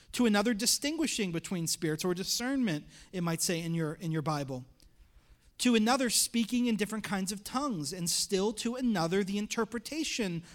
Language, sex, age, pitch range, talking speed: English, male, 30-49, 165-210 Hz, 165 wpm